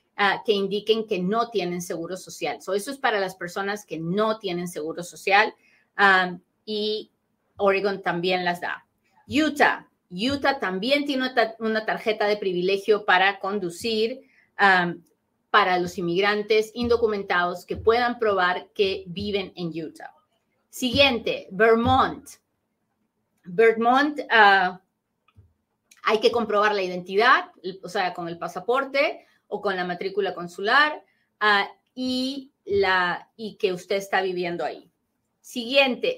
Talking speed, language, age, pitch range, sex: 120 wpm, Spanish, 30-49, 190-240 Hz, female